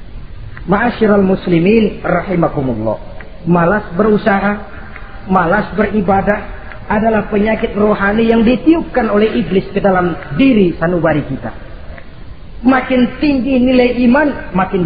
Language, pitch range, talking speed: Indonesian, 155-220 Hz, 95 wpm